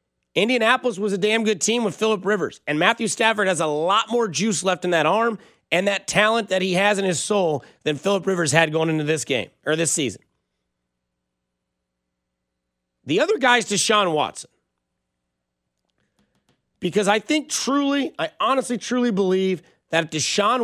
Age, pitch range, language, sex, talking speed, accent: 30-49, 155-205 Hz, English, male, 170 wpm, American